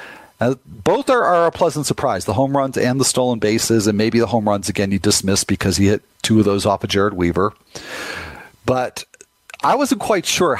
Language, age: English, 40-59